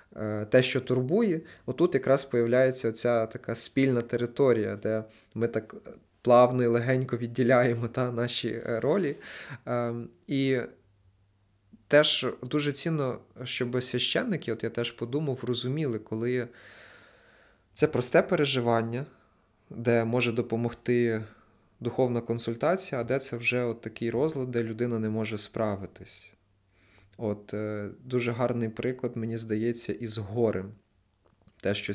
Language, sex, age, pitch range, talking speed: Ukrainian, male, 20-39, 105-125 Hz, 115 wpm